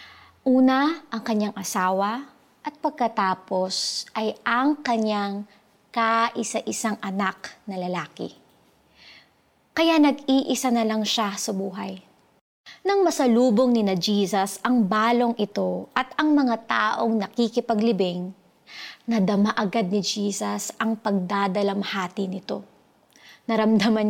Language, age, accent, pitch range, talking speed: Filipino, 20-39, native, 200-245 Hz, 100 wpm